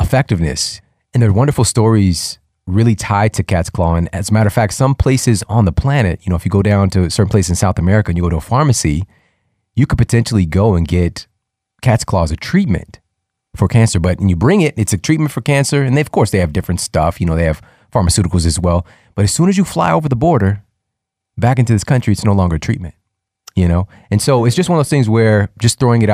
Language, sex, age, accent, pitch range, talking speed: English, male, 30-49, American, 90-115 Hz, 250 wpm